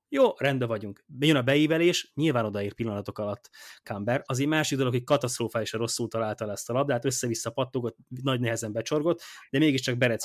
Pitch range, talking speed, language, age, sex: 110-140 Hz, 175 wpm, Hungarian, 20-39, male